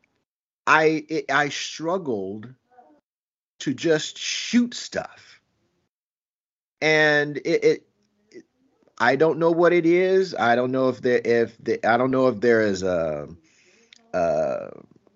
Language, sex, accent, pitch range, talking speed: English, male, American, 100-150 Hz, 130 wpm